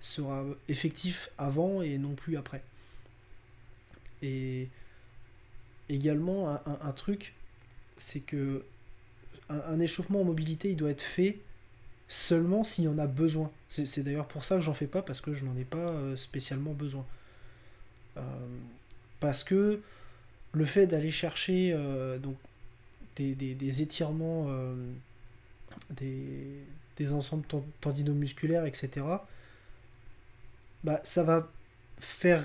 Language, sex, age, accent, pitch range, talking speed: French, male, 20-39, French, 120-160 Hz, 130 wpm